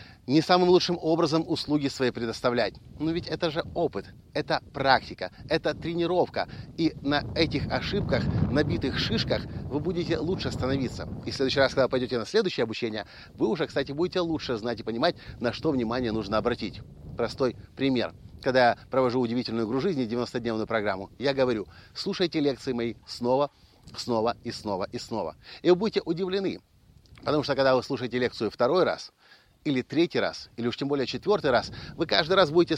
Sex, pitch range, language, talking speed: male, 115-165 Hz, Russian, 170 wpm